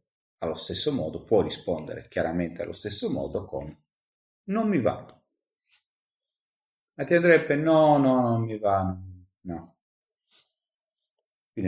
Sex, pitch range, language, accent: male, 90-120 Hz, Italian, native